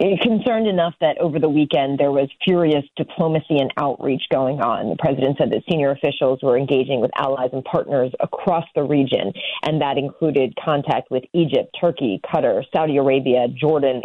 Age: 30-49